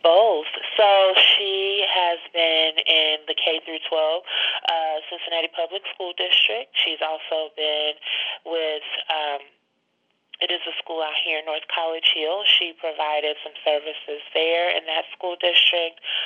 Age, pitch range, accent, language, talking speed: 30-49, 155-180 Hz, American, English, 135 wpm